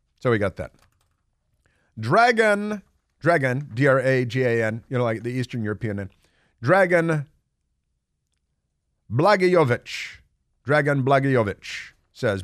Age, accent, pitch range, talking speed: 50-69, American, 105-135 Hz, 115 wpm